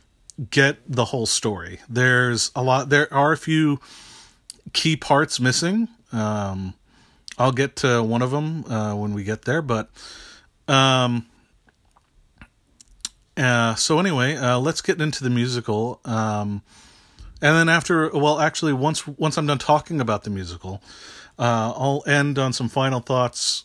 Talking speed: 145 wpm